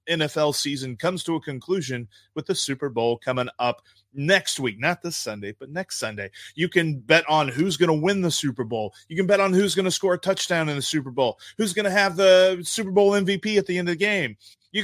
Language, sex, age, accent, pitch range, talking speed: English, male, 30-49, American, 125-180 Hz, 245 wpm